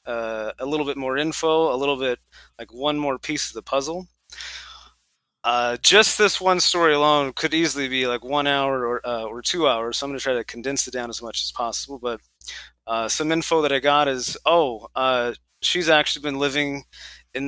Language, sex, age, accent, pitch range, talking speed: English, male, 20-39, American, 125-150 Hz, 210 wpm